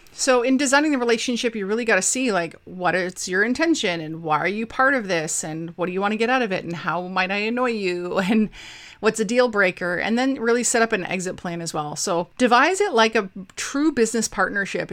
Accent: American